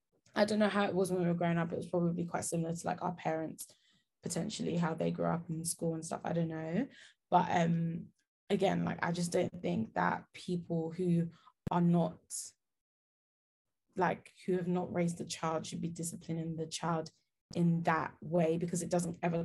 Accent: British